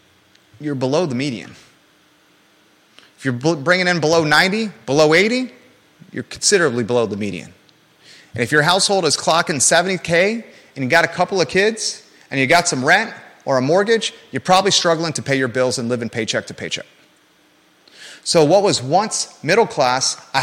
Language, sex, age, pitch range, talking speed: English, male, 30-49, 140-185 Hz, 175 wpm